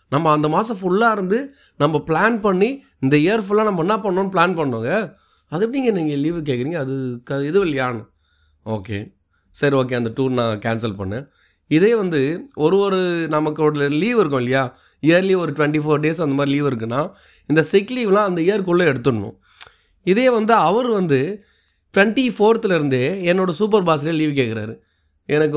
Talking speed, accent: 160 wpm, native